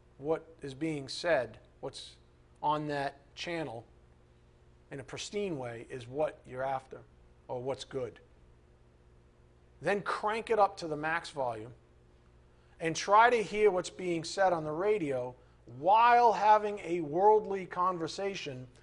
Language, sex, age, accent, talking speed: English, male, 40-59, American, 135 wpm